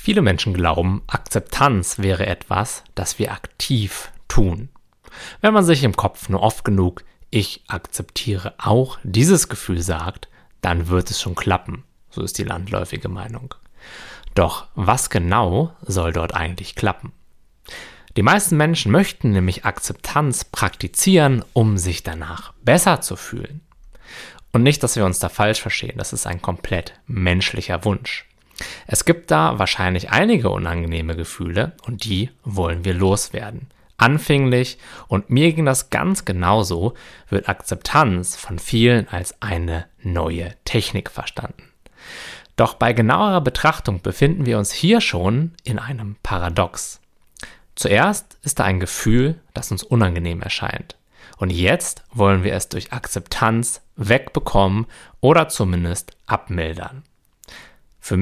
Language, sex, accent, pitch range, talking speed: German, male, German, 90-125 Hz, 135 wpm